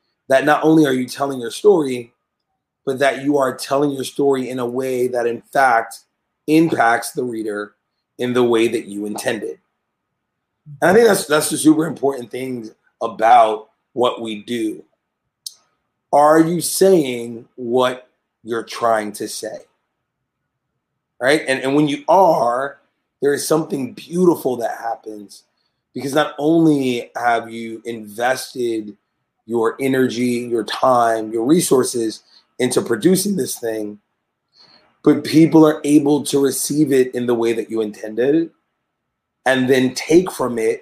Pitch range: 115-145 Hz